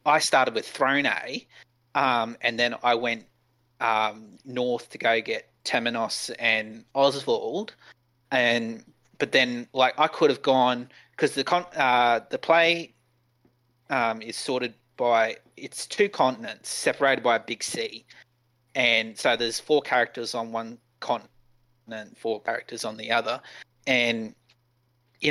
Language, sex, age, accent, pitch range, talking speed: English, male, 30-49, Australian, 115-130 Hz, 140 wpm